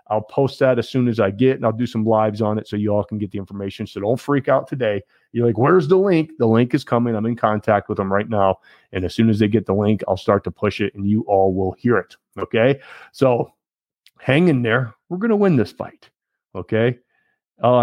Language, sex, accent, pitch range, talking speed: English, male, American, 100-125 Hz, 250 wpm